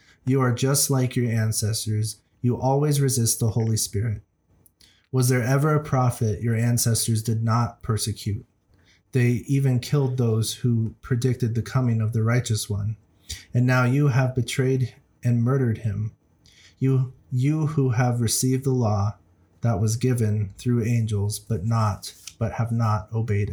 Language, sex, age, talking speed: English, male, 30-49, 155 wpm